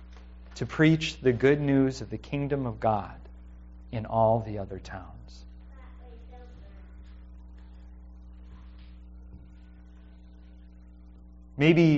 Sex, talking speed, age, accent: male, 80 wpm, 30-49, American